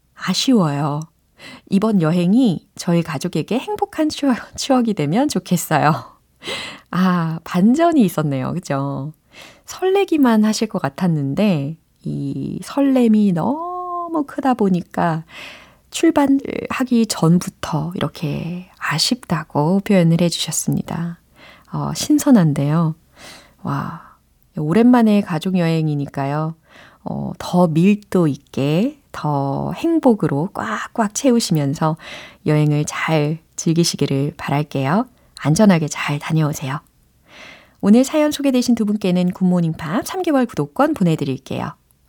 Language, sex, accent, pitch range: Korean, female, native, 155-240 Hz